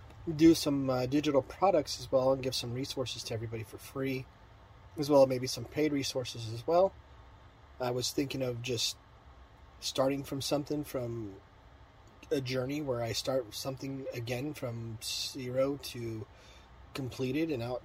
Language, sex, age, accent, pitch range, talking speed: English, male, 30-49, American, 110-135 Hz, 155 wpm